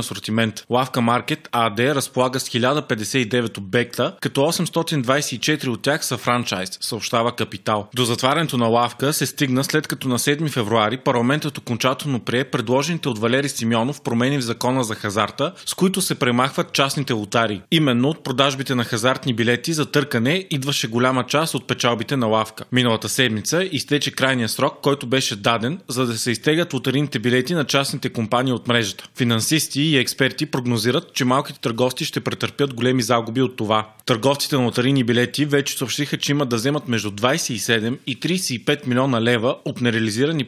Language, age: Bulgarian, 20-39